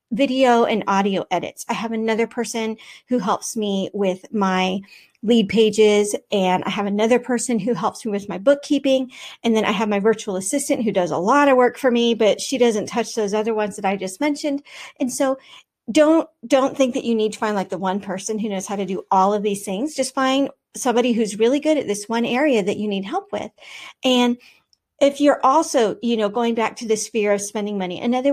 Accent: American